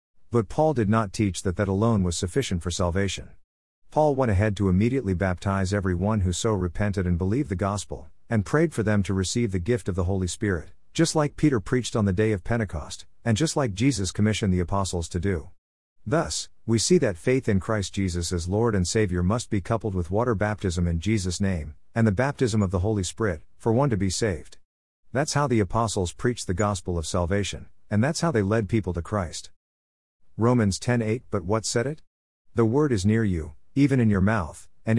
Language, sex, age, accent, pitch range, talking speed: English, male, 50-69, American, 90-115 Hz, 210 wpm